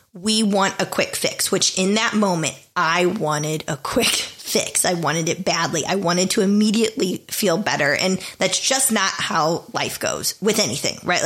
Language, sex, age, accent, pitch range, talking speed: English, female, 20-39, American, 170-210 Hz, 180 wpm